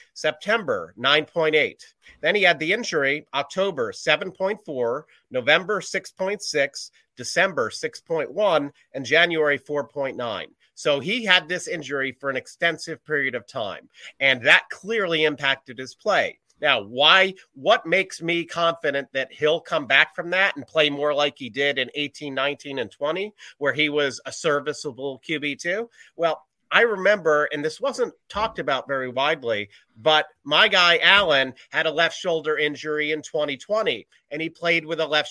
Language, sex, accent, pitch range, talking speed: English, male, American, 145-185 Hz, 150 wpm